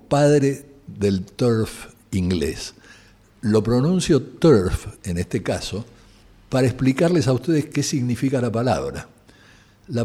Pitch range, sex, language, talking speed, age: 95-125 Hz, male, Spanish, 115 wpm, 60-79